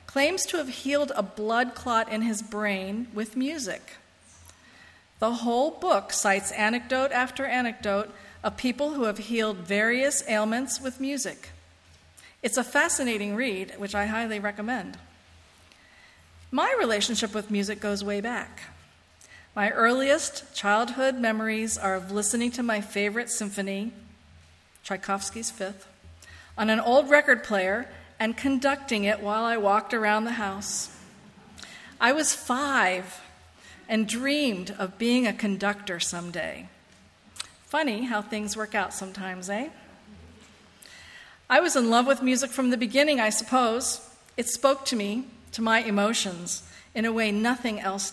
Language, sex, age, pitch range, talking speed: English, female, 40-59, 200-255 Hz, 135 wpm